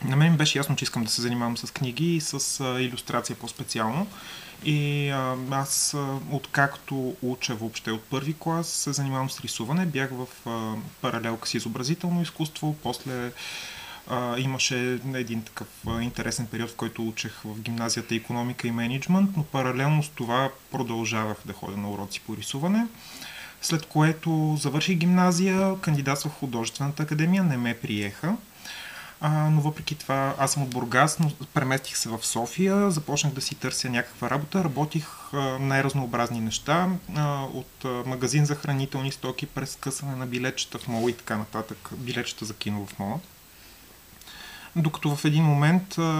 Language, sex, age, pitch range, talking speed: Bulgarian, male, 30-49, 120-155 Hz, 150 wpm